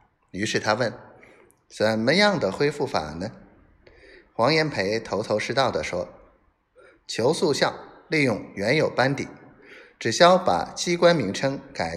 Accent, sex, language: native, male, Chinese